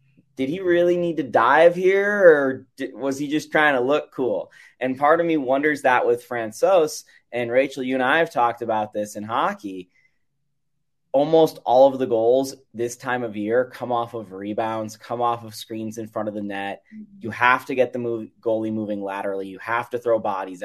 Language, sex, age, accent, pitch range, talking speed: English, male, 20-39, American, 110-135 Hz, 205 wpm